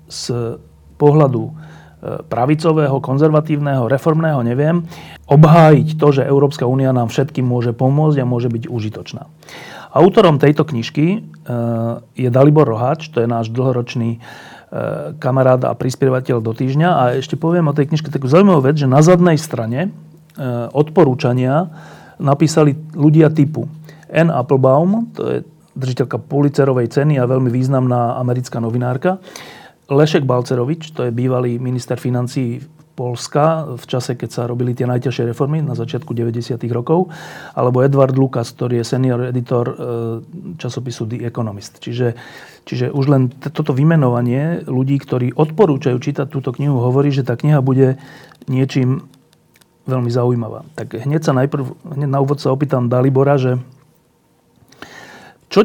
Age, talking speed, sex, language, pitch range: 40-59, 135 wpm, male, Slovak, 125-155 Hz